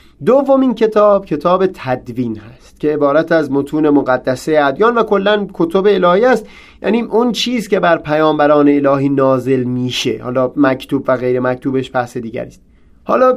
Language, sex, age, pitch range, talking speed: Persian, male, 30-49, 135-200 Hz, 155 wpm